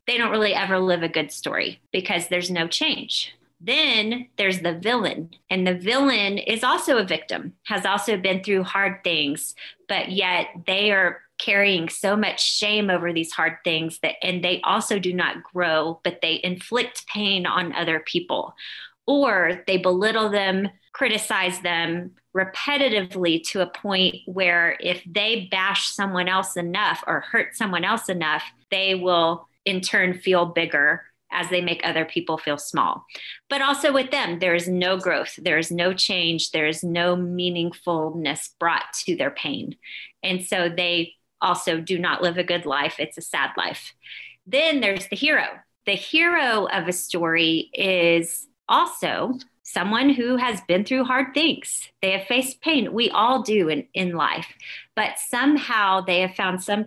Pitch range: 175-215 Hz